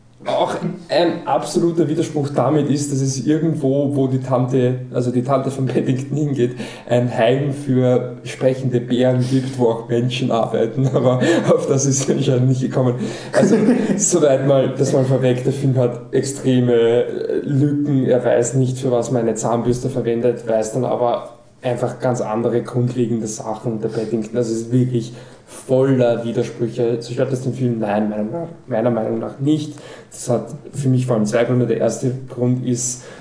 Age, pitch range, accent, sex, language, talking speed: 20-39, 115-130 Hz, German, male, German, 170 wpm